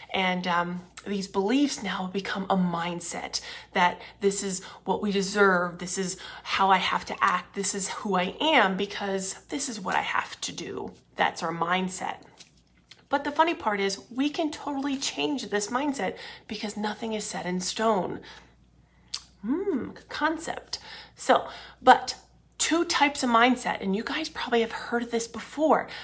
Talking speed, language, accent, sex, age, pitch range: 165 wpm, English, American, female, 30-49, 190-265 Hz